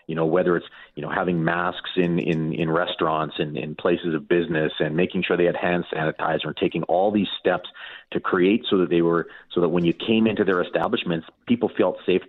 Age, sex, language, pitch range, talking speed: 40-59, male, English, 85-95 Hz, 220 wpm